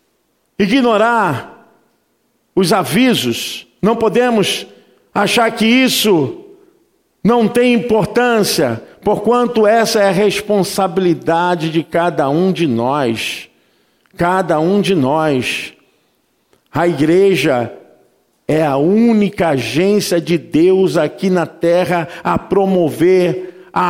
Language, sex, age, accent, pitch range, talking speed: Portuguese, male, 50-69, Brazilian, 170-220 Hz, 100 wpm